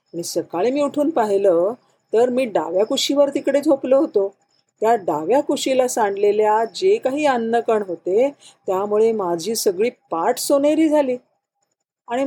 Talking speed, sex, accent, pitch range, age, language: 125 wpm, female, native, 195-260 Hz, 40-59, Marathi